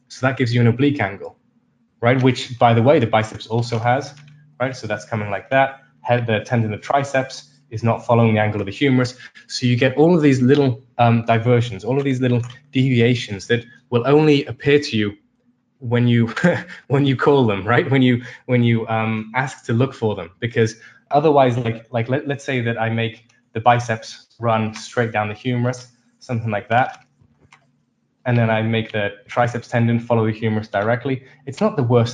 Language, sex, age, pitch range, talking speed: English, male, 20-39, 115-135 Hz, 200 wpm